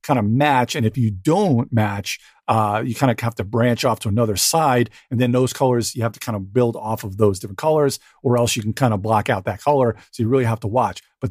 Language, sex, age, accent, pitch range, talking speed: English, male, 50-69, American, 110-140 Hz, 270 wpm